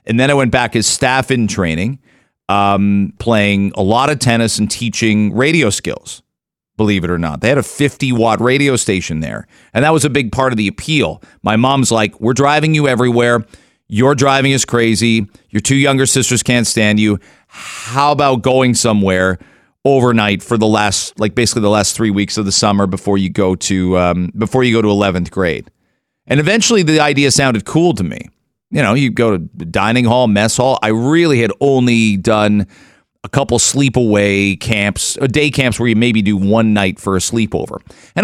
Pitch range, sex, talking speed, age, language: 100-130 Hz, male, 195 wpm, 40-59, English